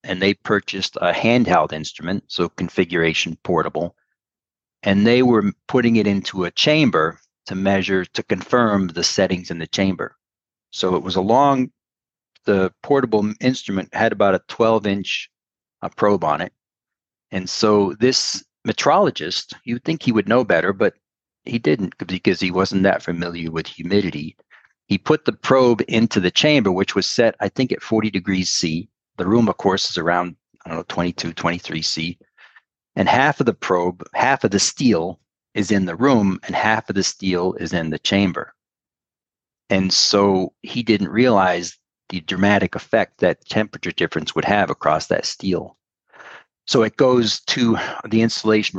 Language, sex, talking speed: English, male, 165 wpm